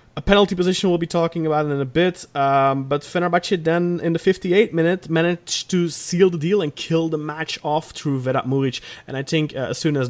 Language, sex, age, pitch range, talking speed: English, male, 30-49, 120-165 Hz, 225 wpm